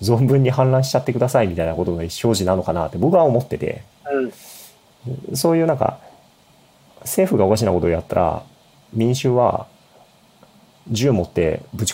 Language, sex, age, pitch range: Japanese, male, 30-49, 90-125 Hz